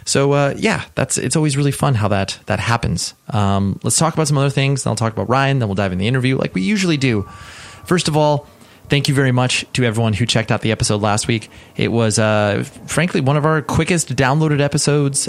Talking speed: 235 wpm